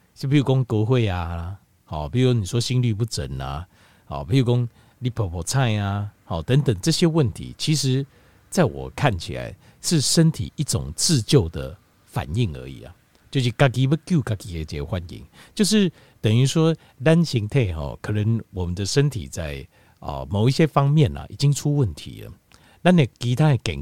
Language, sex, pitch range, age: Chinese, male, 90-135 Hz, 50-69